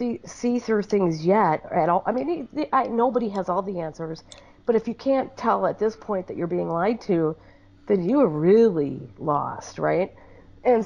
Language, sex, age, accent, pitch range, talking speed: English, female, 40-59, American, 190-255 Hz, 205 wpm